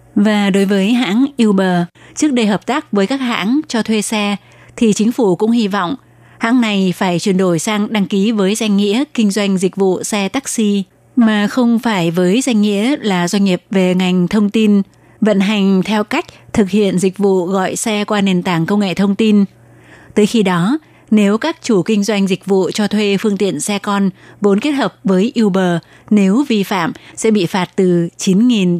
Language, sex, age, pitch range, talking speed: Vietnamese, female, 20-39, 185-220 Hz, 200 wpm